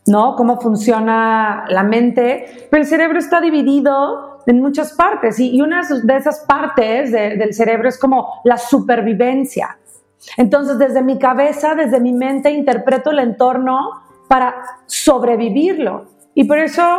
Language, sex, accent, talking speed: Spanish, female, Mexican, 140 wpm